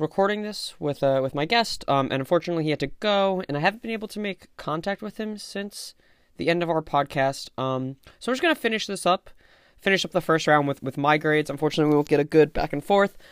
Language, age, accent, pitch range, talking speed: English, 20-39, American, 135-175 Hz, 255 wpm